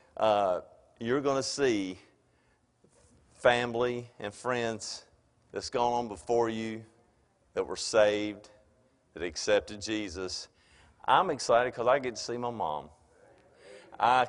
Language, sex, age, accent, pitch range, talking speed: English, male, 50-69, American, 100-140 Hz, 120 wpm